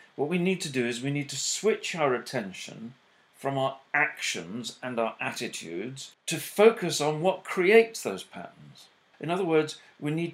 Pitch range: 125-170 Hz